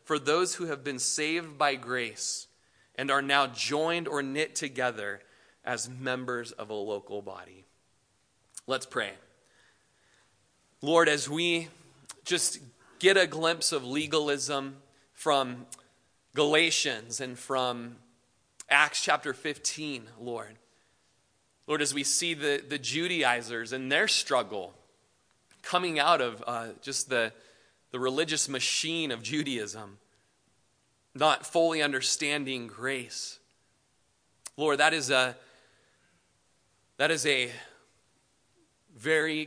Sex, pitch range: male, 120-150 Hz